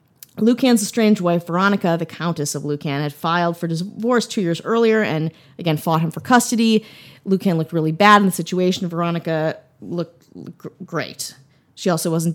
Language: English